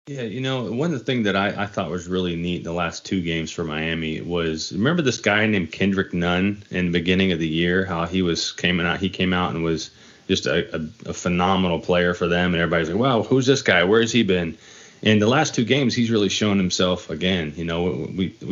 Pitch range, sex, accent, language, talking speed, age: 85-110 Hz, male, American, English, 250 wpm, 30-49